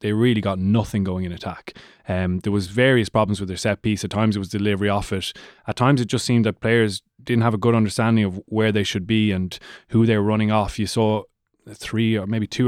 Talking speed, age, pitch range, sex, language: 245 wpm, 20-39, 105-110 Hz, male, English